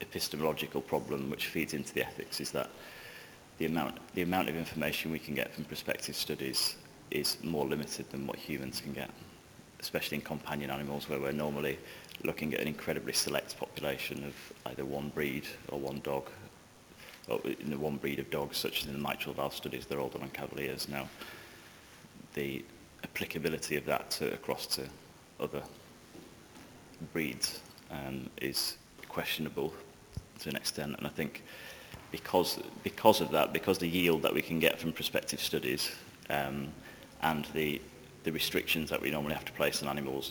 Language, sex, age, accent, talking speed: English, male, 30-49, British, 170 wpm